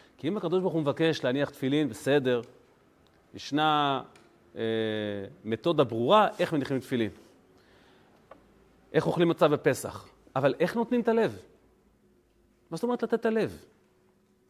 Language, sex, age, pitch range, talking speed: Hebrew, male, 40-59, 125-185 Hz, 130 wpm